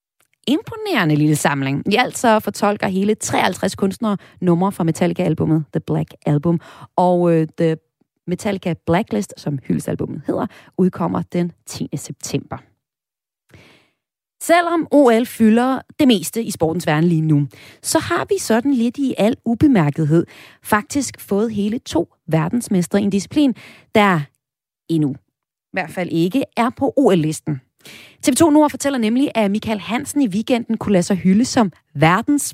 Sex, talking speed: female, 145 wpm